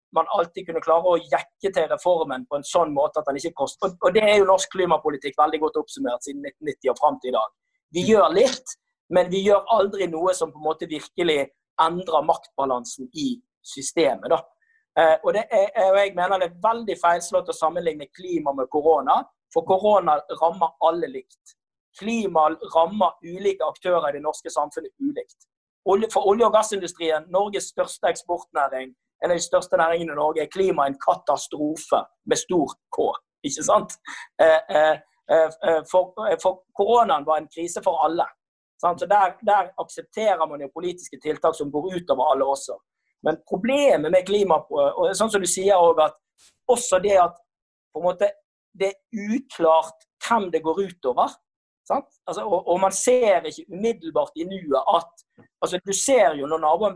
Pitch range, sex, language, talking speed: 160-205 Hz, male, English, 160 wpm